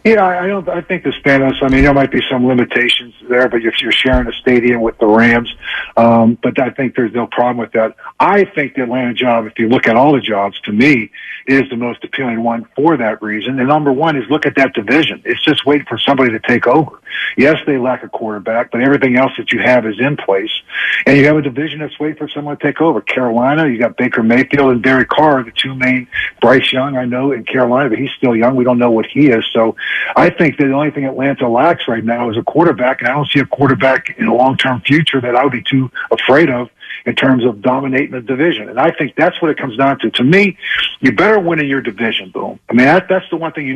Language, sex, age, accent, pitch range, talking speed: English, male, 50-69, American, 120-145 Hz, 255 wpm